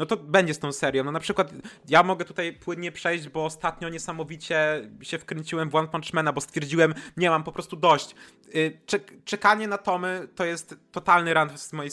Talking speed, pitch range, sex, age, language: 190 wpm, 135-180 Hz, male, 20-39, Polish